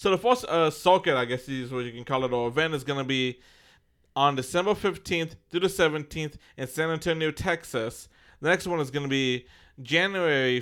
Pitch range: 130-170 Hz